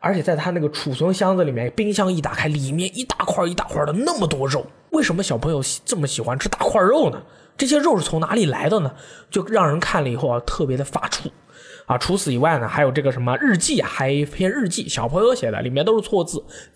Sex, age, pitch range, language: male, 20-39, 145-215 Hz, Chinese